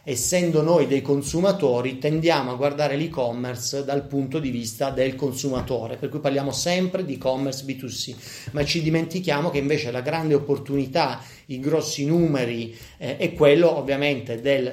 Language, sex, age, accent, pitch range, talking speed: Italian, male, 30-49, native, 130-155 Hz, 150 wpm